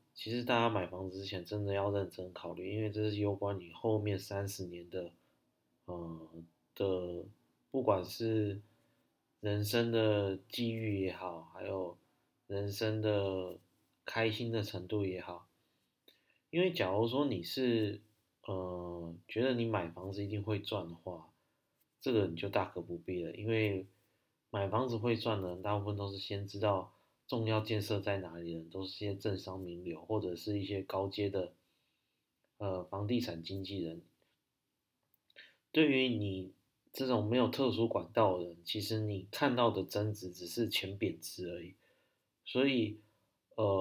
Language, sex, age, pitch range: Chinese, male, 30-49, 90-110 Hz